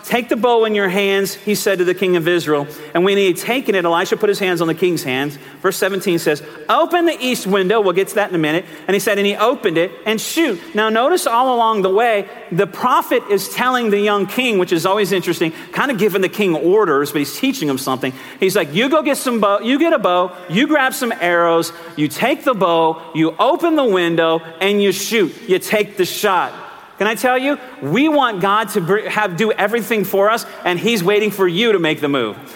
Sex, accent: male, American